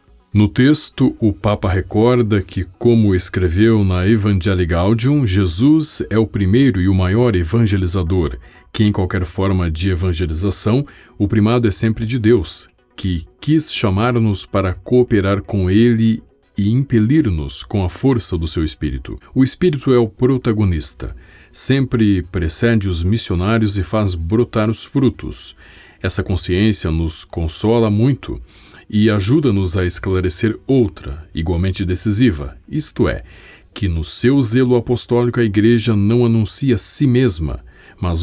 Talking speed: 135 wpm